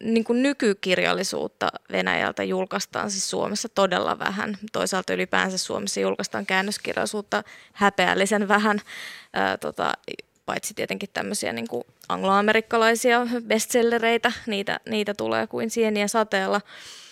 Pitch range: 185-210 Hz